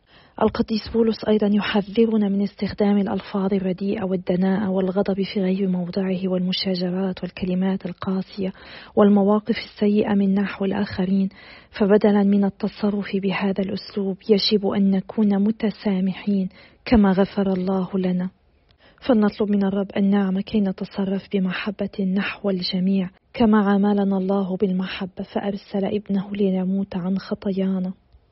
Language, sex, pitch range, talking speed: Arabic, female, 195-215 Hz, 110 wpm